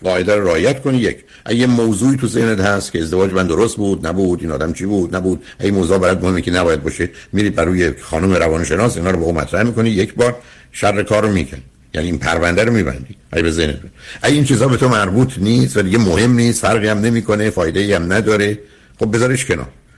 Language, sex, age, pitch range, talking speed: Persian, male, 60-79, 85-120 Hz, 215 wpm